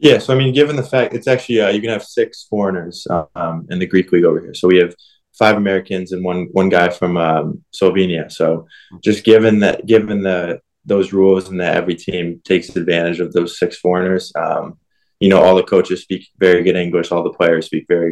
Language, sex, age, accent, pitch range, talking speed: English, male, 20-39, American, 90-105 Hz, 220 wpm